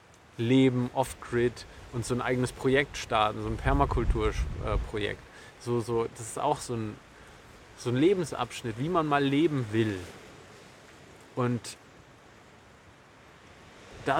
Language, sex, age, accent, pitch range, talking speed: German, male, 20-39, German, 110-140 Hz, 125 wpm